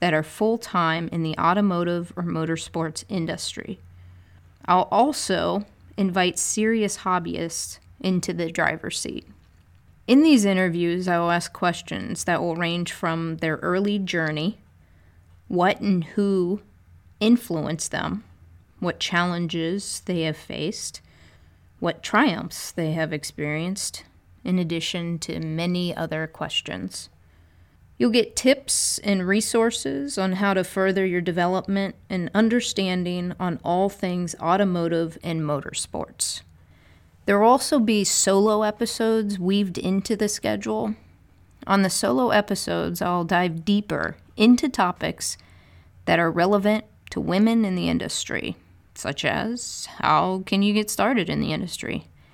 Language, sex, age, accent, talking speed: English, female, 30-49, American, 125 wpm